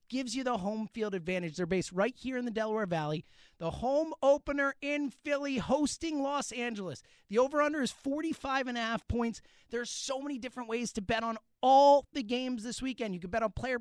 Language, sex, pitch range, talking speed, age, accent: English, male, 195-255 Hz, 195 wpm, 30-49, American